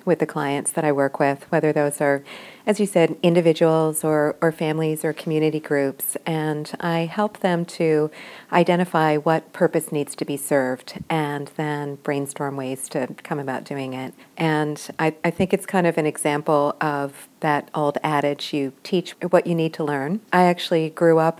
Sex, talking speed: female, 180 wpm